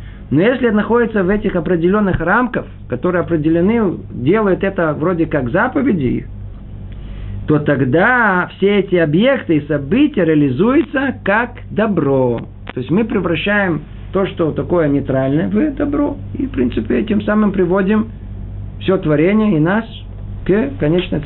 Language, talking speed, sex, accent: Russian, 130 wpm, male, native